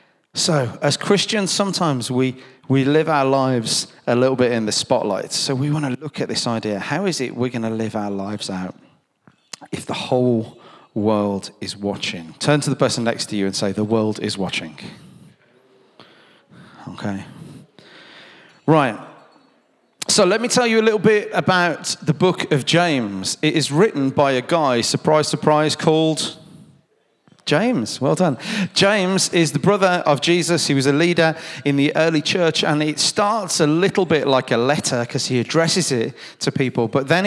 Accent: British